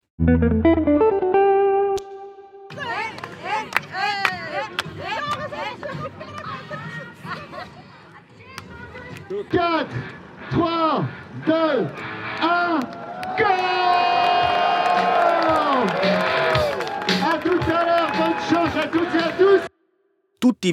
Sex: male